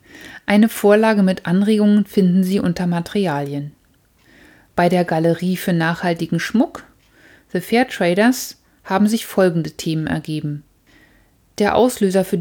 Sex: female